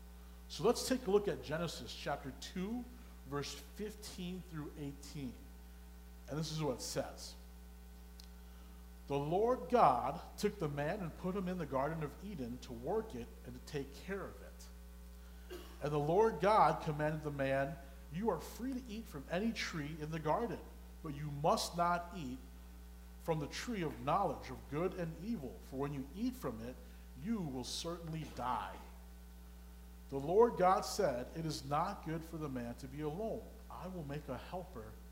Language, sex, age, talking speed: English, male, 40-59, 175 wpm